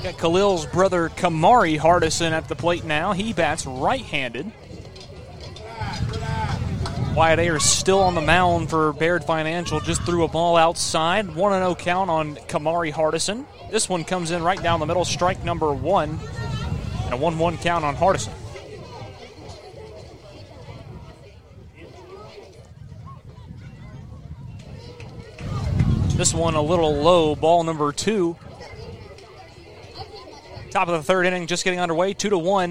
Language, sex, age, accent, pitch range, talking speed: English, male, 30-49, American, 155-180 Hz, 120 wpm